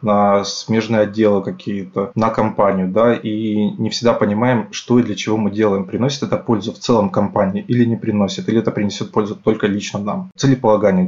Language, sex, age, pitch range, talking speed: Russian, male, 20-39, 105-120 Hz, 185 wpm